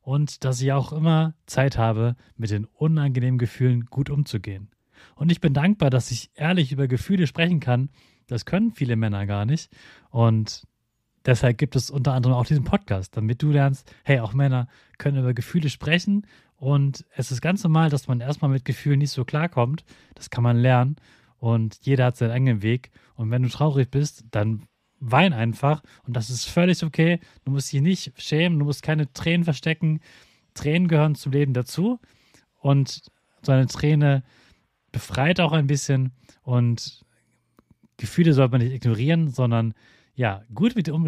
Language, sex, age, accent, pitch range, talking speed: German, male, 30-49, German, 120-150 Hz, 175 wpm